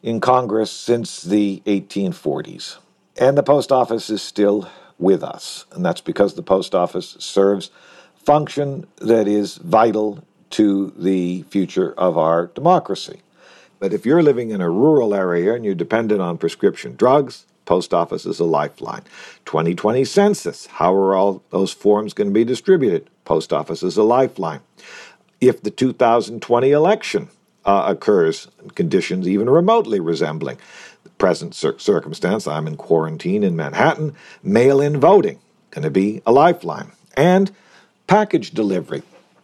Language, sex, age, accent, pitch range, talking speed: English, male, 50-69, American, 95-150 Hz, 140 wpm